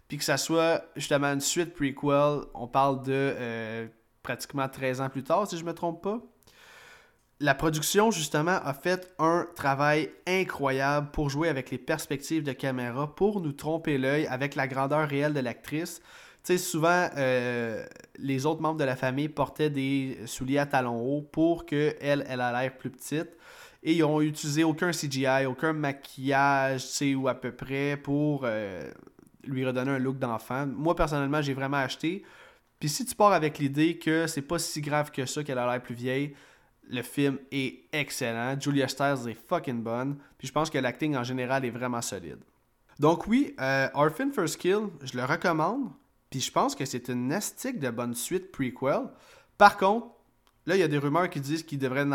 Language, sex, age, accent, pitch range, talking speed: French, male, 20-39, Canadian, 130-155 Hz, 190 wpm